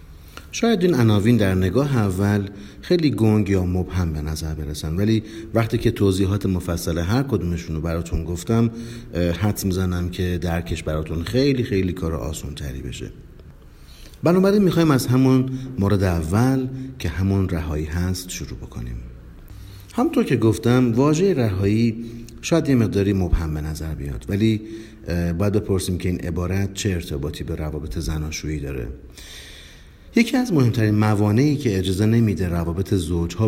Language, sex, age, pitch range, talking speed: Persian, male, 50-69, 85-115 Hz, 145 wpm